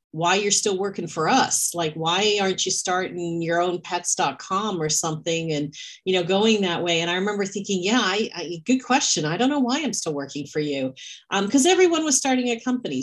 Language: English